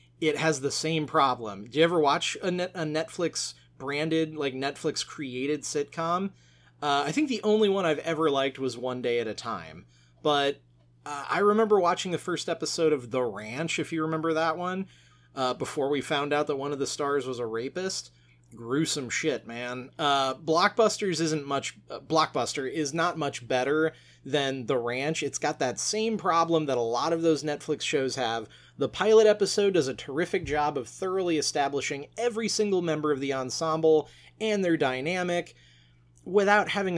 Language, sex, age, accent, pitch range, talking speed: English, male, 30-49, American, 125-175 Hz, 180 wpm